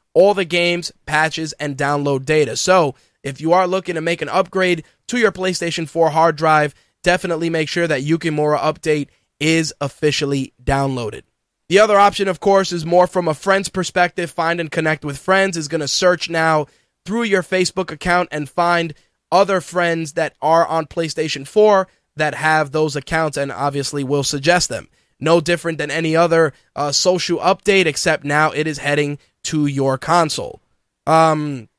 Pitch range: 150-175 Hz